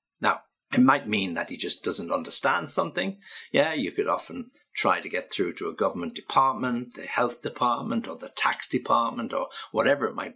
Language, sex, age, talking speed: English, male, 60-79, 190 wpm